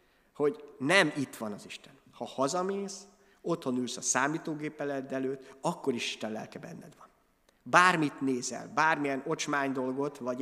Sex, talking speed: male, 145 wpm